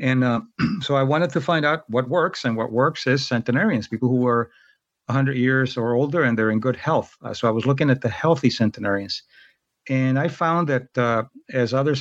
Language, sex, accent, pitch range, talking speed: English, male, American, 120-140 Hz, 215 wpm